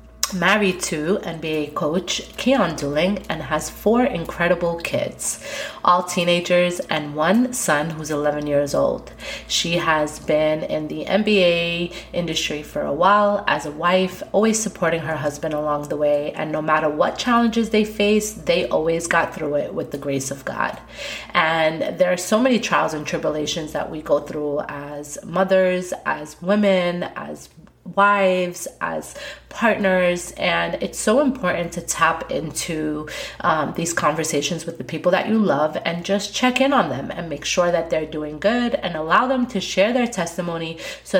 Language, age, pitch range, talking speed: English, 30-49, 150-195 Hz, 165 wpm